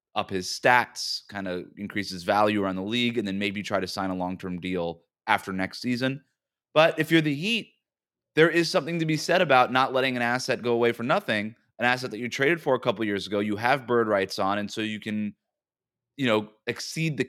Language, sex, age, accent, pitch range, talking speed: English, male, 30-49, American, 105-130 Hz, 230 wpm